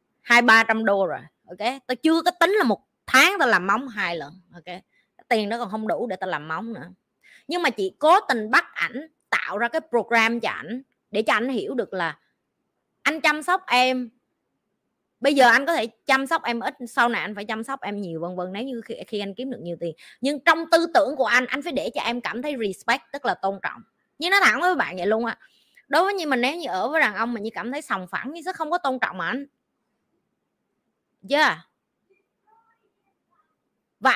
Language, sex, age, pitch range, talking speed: Vietnamese, female, 20-39, 225-325 Hz, 230 wpm